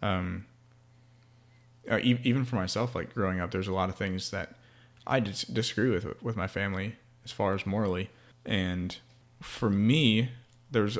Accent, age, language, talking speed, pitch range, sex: American, 20-39, English, 155 wpm, 100-125 Hz, male